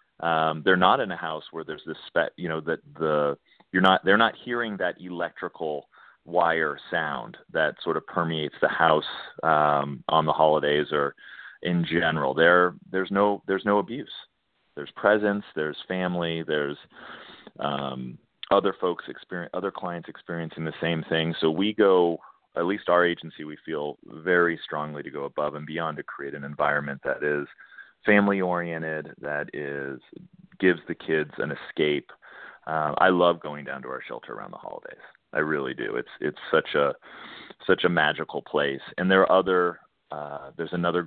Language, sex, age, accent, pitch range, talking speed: English, male, 30-49, American, 75-90 Hz, 170 wpm